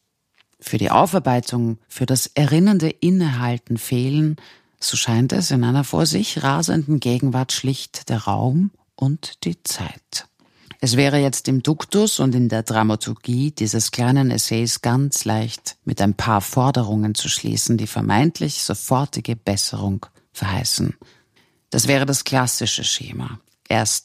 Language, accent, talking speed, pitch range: German, German, 135 wpm, 115-145 Hz